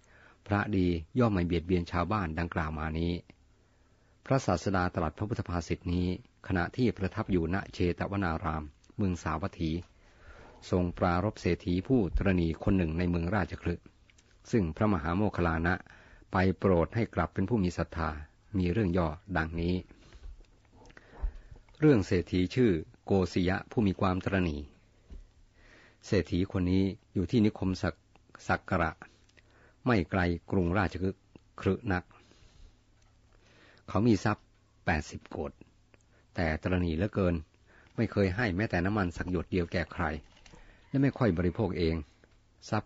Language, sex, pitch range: Thai, male, 85-105 Hz